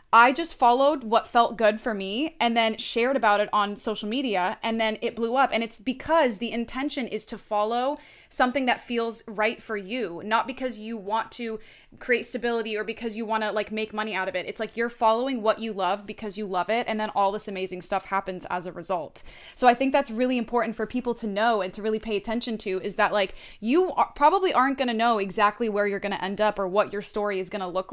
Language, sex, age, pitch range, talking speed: English, female, 20-39, 210-245 Hz, 245 wpm